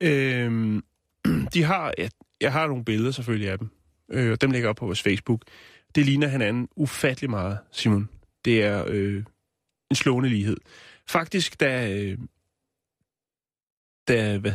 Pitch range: 115-145 Hz